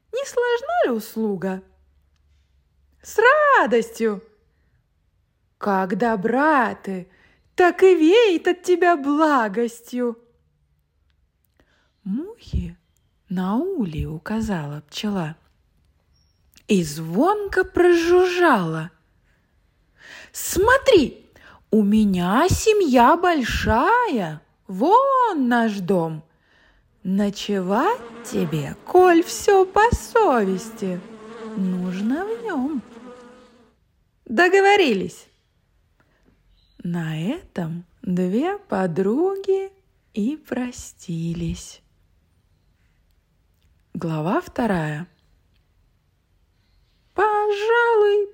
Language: Russian